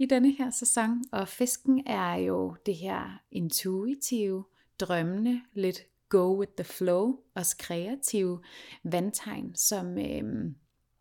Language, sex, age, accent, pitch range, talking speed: Danish, female, 30-49, native, 175-225 Hz, 120 wpm